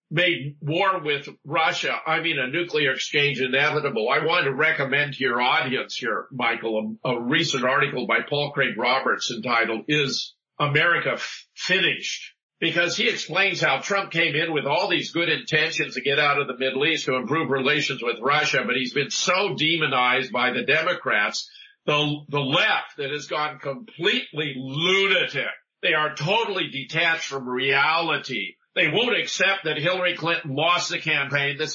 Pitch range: 135-165 Hz